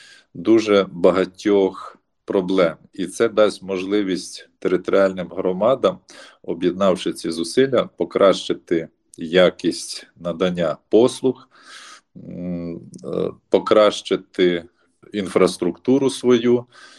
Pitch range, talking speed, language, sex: 90-105 Hz, 65 wpm, Ukrainian, male